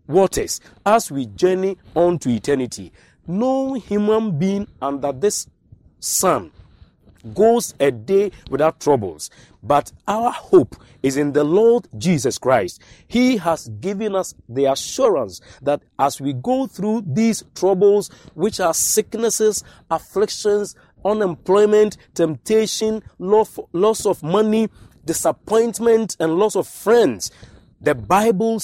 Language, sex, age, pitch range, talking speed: English, male, 50-69, 145-215 Hz, 115 wpm